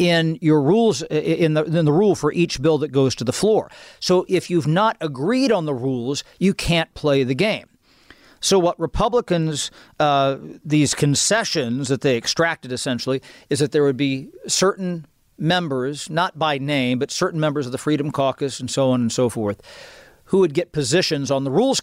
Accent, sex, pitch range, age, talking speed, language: American, male, 135-165 Hz, 50-69, 190 wpm, English